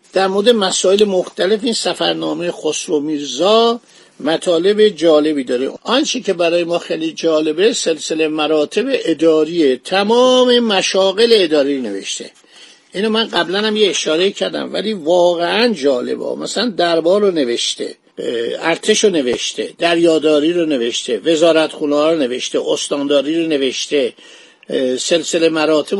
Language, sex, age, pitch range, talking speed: Persian, male, 50-69, 160-215 Hz, 120 wpm